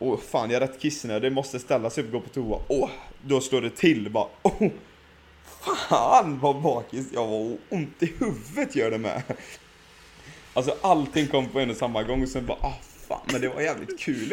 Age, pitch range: 30-49, 125-170 Hz